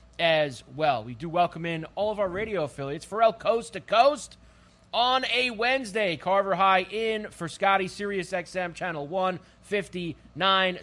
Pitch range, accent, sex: 145-200 Hz, American, male